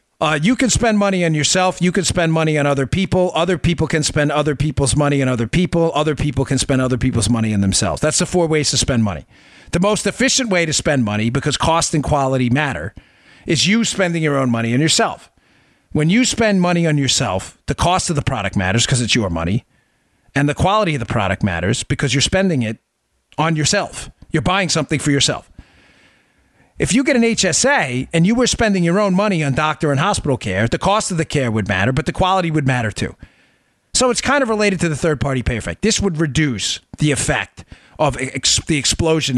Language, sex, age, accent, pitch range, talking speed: English, male, 40-59, American, 130-180 Hz, 220 wpm